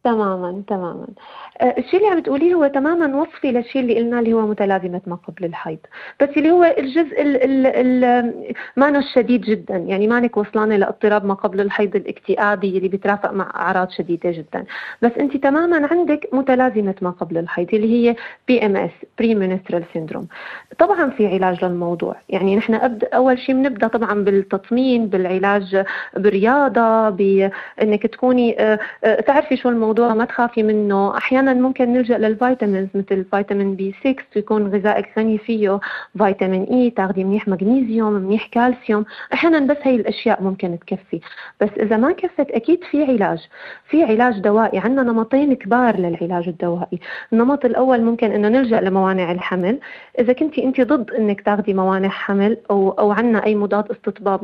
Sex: female